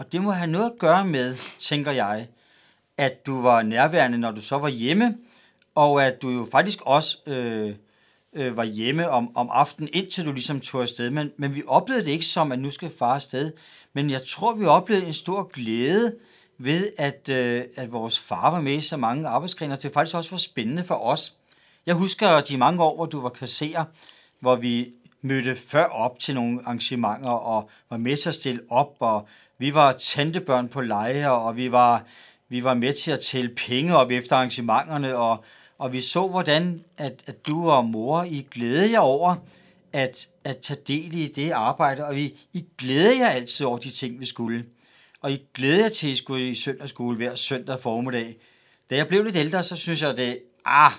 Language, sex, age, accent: Danish, male, 40-59, native